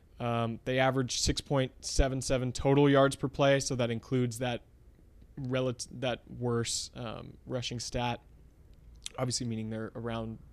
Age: 20-39